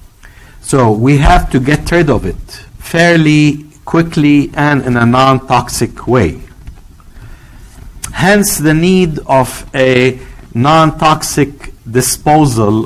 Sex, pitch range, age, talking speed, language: male, 110-150 Hz, 50-69, 105 wpm, English